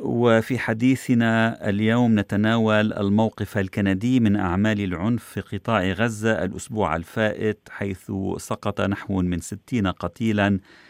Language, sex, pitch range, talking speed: Arabic, male, 95-115 Hz, 110 wpm